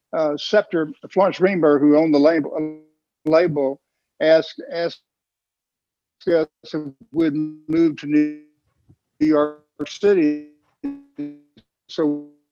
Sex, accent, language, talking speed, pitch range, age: male, American, English, 95 wpm, 155-175 Hz, 60-79